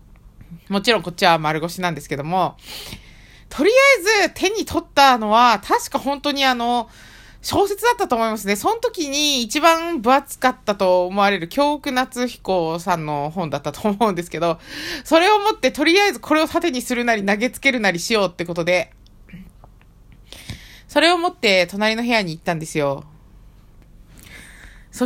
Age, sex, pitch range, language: 20-39, female, 180-295 Hz, Japanese